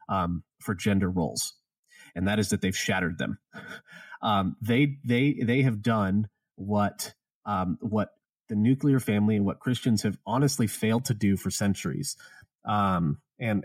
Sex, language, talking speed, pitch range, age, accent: male, English, 155 wpm, 105-140 Hz, 30-49, American